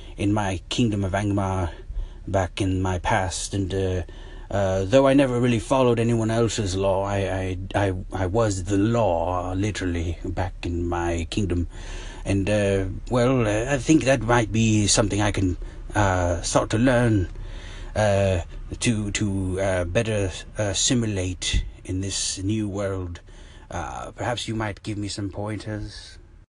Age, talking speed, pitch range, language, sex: 30-49, 150 wpm, 90-105 Hz, English, male